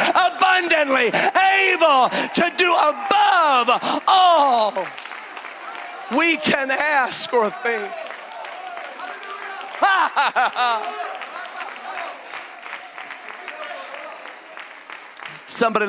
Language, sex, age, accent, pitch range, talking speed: English, male, 40-59, American, 210-335 Hz, 45 wpm